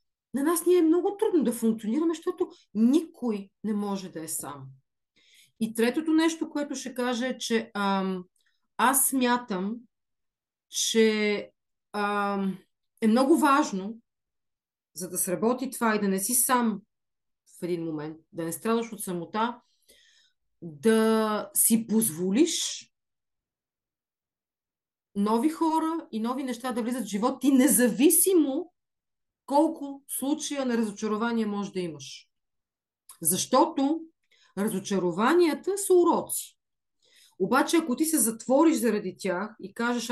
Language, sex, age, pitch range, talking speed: Bulgarian, female, 40-59, 195-285 Hz, 125 wpm